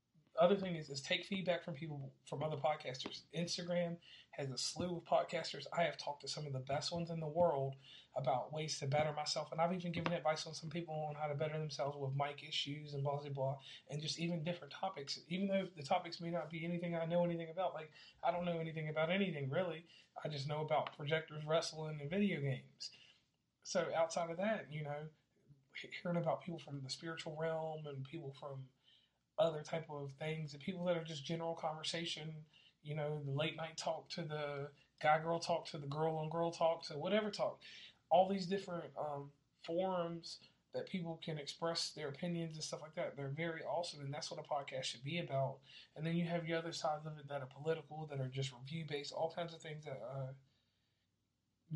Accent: American